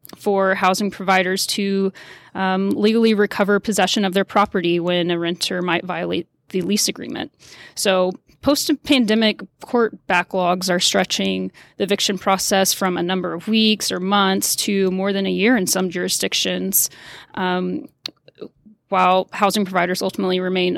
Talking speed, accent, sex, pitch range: 140 wpm, American, female, 185-205 Hz